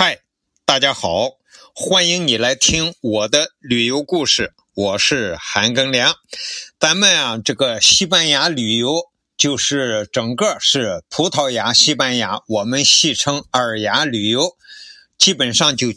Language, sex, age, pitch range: Chinese, male, 50-69, 120-190 Hz